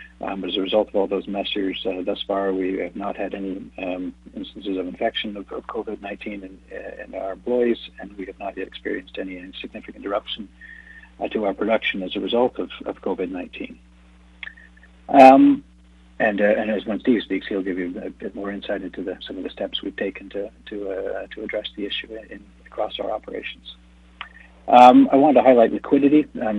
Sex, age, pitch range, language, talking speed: male, 60-79, 95-110 Hz, English, 200 wpm